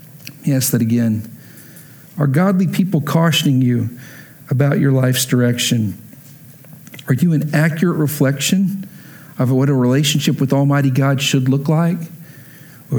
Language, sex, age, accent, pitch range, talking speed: English, male, 50-69, American, 125-150 Hz, 140 wpm